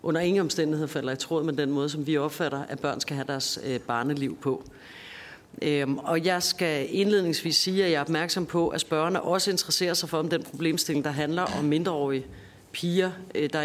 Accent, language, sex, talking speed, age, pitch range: native, Danish, female, 205 wpm, 40-59, 145-175 Hz